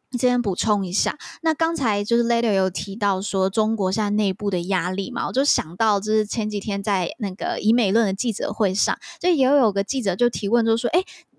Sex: female